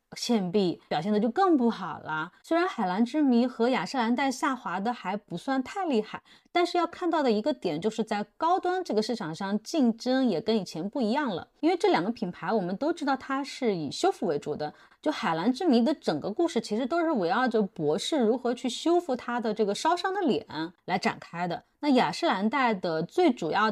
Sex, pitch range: female, 195-280 Hz